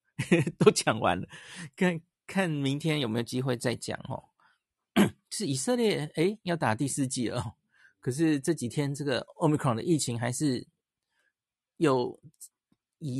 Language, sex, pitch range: Chinese, male, 125-165 Hz